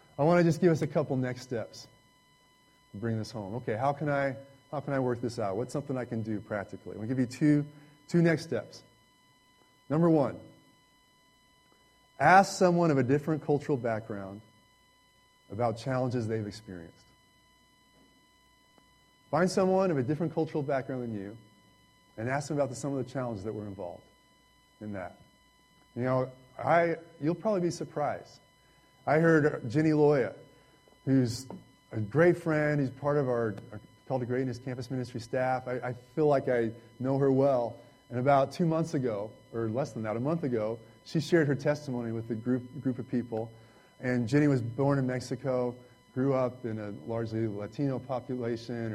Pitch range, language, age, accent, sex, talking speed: 115-145 Hz, English, 30-49, American, male, 175 wpm